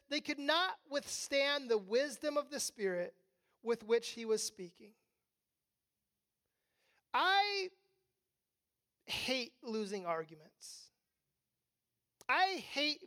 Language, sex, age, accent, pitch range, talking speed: English, male, 30-49, American, 235-360 Hz, 90 wpm